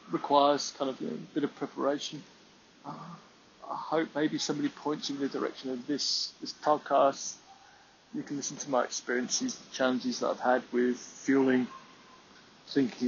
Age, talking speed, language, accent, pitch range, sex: 20-39, 170 wpm, English, British, 120-145 Hz, male